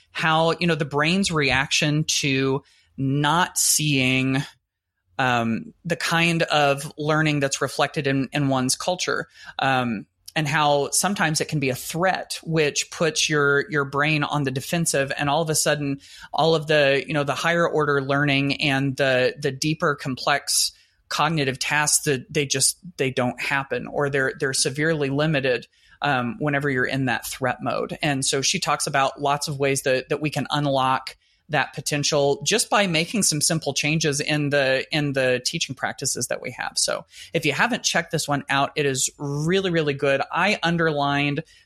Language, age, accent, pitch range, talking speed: English, 30-49, American, 140-160 Hz, 175 wpm